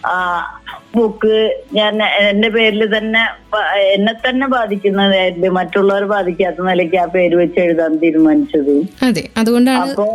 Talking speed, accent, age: 100 wpm, native, 20-39